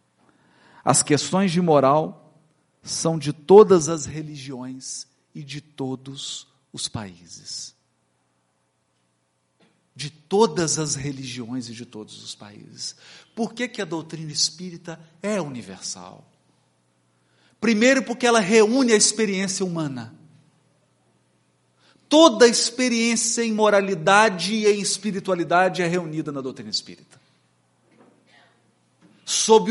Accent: Brazilian